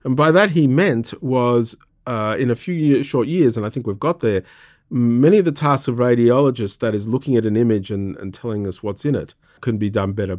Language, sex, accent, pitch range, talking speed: English, male, Australian, 100-140 Hz, 235 wpm